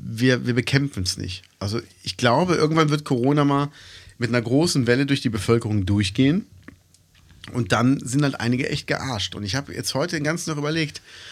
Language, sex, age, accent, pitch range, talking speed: German, male, 40-59, German, 110-150 Hz, 190 wpm